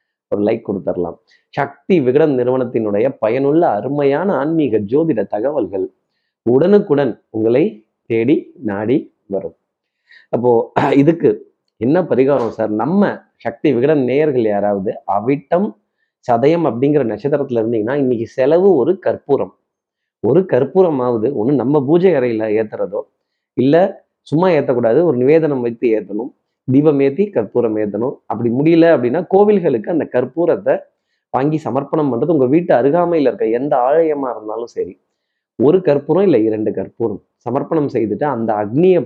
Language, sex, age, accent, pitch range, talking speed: Tamil, male, 30-49, native, 115-175 Hz, 120 wpm